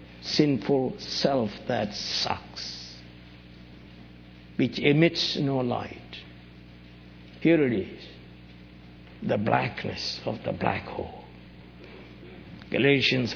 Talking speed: 80 wpm